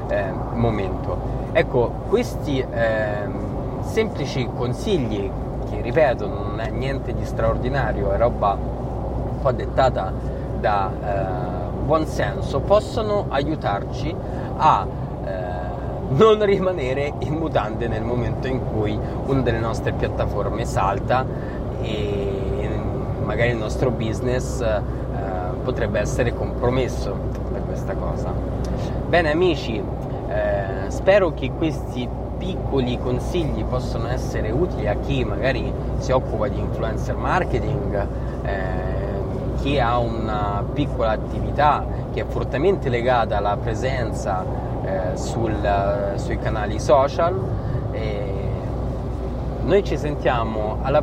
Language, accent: Italian, native